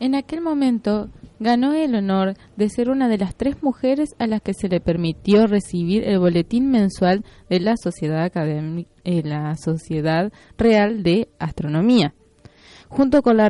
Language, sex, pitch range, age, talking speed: Spanish, female, 175-240 Hz, 20-39, 145 wpm